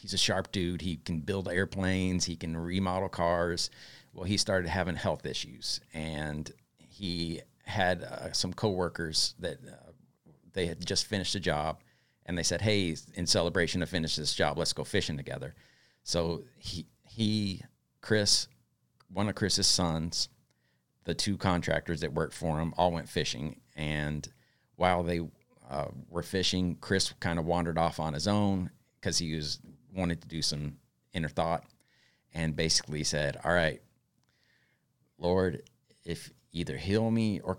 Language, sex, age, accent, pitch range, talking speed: English, male, 40-59, American, 80-95 Hz, 160 wpm